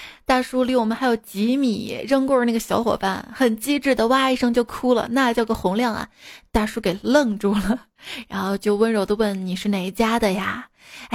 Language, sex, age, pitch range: Chinese, female, 20-39, 195-240 Hz